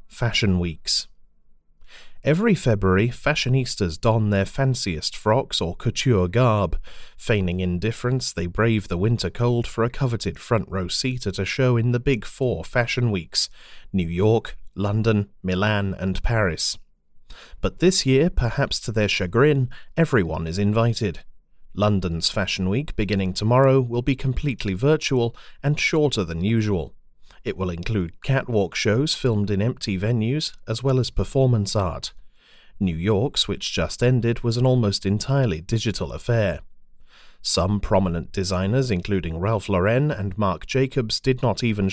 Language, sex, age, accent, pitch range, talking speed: English, male, 30-49, British, 95-125 Hz, 140 wpm